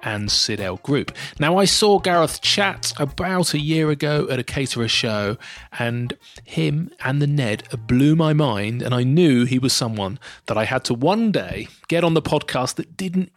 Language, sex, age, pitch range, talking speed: English, male, 30-49, 125-175 Hz, 190 wpm